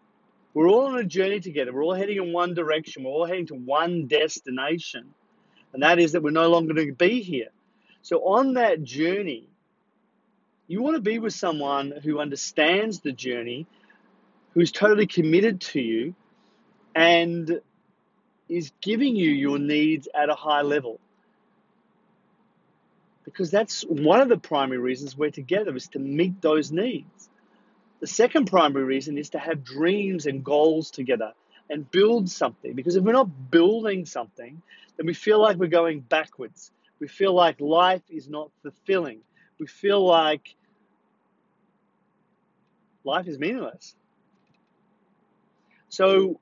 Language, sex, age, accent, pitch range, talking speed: English, male, 30-49, Australian, 150-210 Hz, 145 wpm